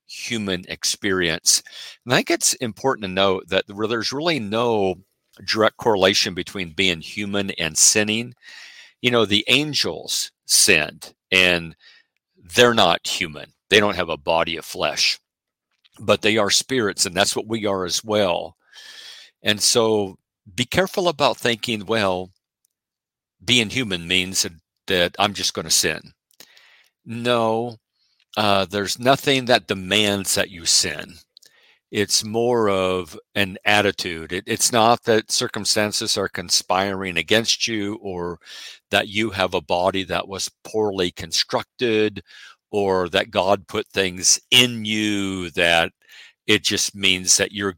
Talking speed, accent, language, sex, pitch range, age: 135 wpm, American, English, male, 95-110 Hz, 50-69